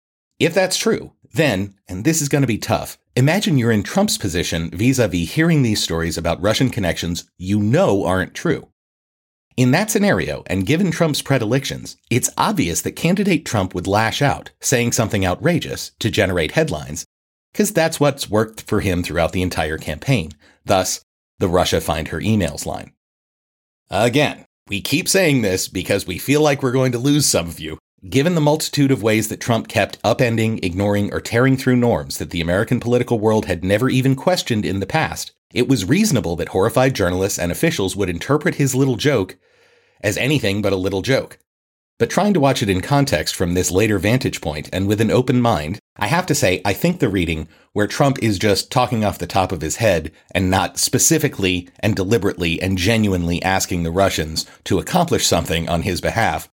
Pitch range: 90-135 Hz